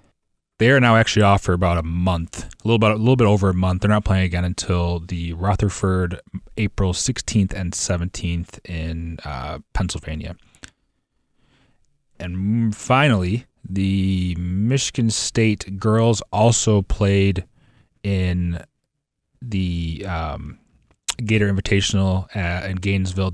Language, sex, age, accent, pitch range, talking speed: English, male, 30-49, American, 90-110 Hz, 125 wpm